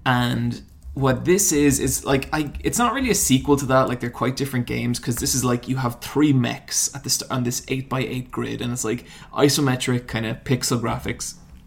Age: 20-39